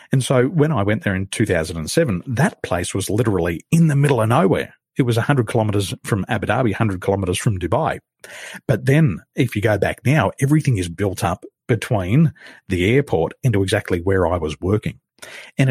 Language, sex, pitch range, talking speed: English, male, 95-130 Hz, 185 wpm